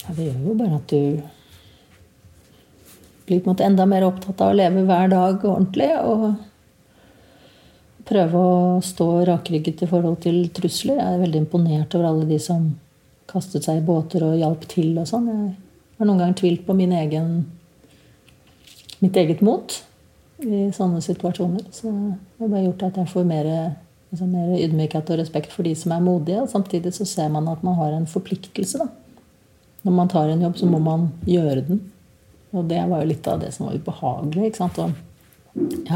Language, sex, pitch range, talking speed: English, female, 155-190 Hz, 185 wpm